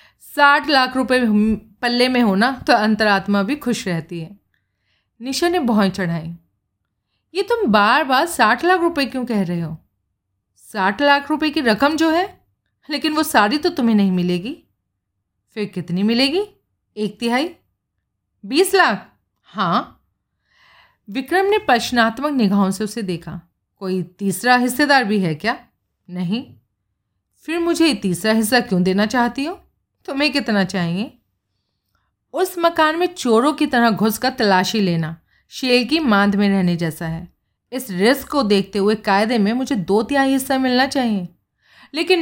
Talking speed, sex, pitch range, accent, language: 150 wpm, female, 185-275 Hz, native, Hindi